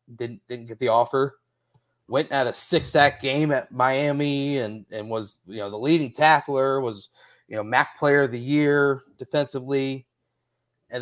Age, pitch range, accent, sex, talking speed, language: 30-49, 115-140 Hz, American, male, 170 wpm, English